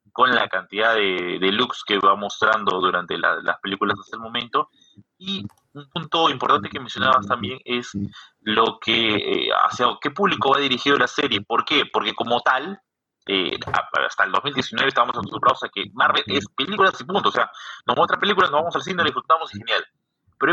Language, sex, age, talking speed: Spanish, male, 30-49, 195 wpm